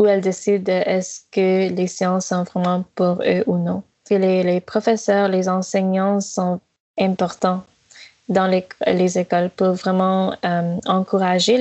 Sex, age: female, 20-39